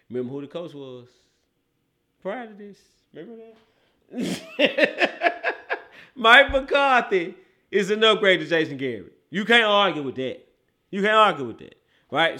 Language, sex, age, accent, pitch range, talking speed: English, male, 30-49, American, 130-195 Hz, 140 wpm